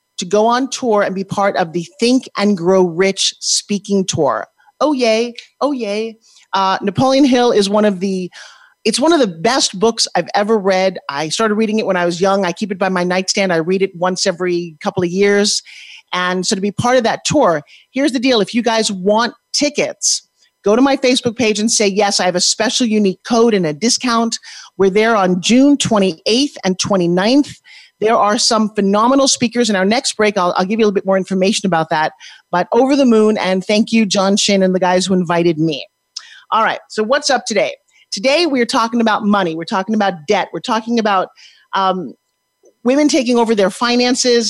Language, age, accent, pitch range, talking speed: English, 40-59, American, 190-240 Hz, 205 wpm